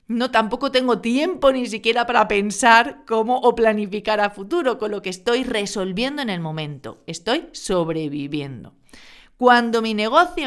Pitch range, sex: 185-240 Hz, female